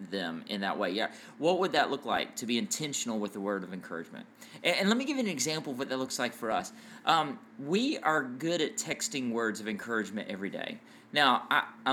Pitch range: 115-185 Hz